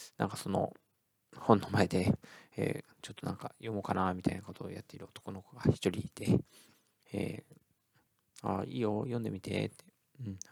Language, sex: Japanese, male